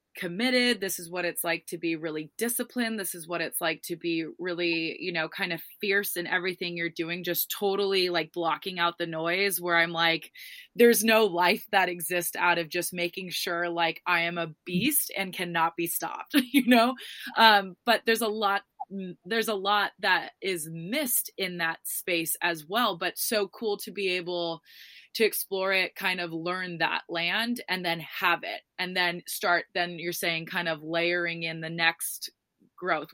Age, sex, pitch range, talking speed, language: 20-39, female, 165-190 Hz, 190 wpm, English